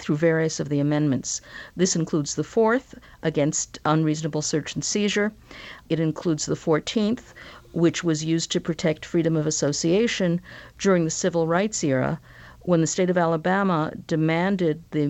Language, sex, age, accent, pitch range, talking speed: English, female, 50-69, American, 150-195 Hz, 150 wpm